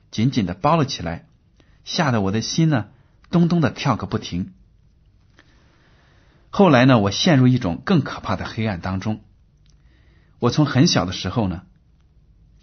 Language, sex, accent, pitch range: Chinese, male, native, 100-140 Hz